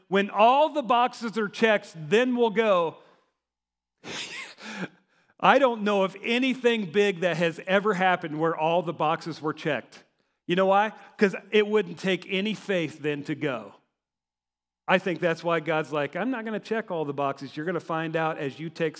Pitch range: 160-225 Hz